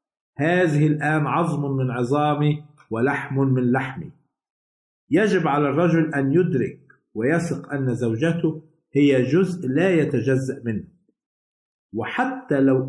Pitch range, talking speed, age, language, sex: 135-165 Hz, 105 wpm, 50-69, Arabic, male